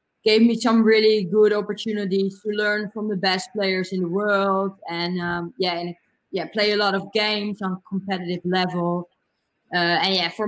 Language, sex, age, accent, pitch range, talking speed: English, female, 20-39, Dutch, 175-195 Hz, 190 wpm